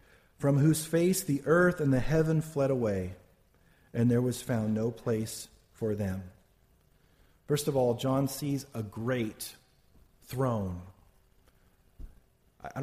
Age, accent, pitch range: 40-59, American, 115-140 Hz